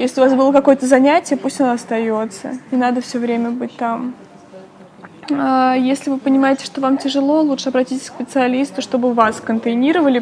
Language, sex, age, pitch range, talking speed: Russian, female, 20-39, 235-265 Hz, 165 wpm